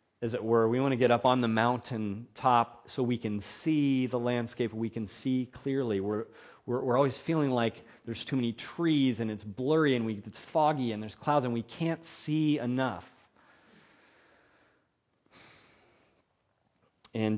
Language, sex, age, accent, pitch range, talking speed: English, male, 30-49, American, 100-125 Hz, 165 wpm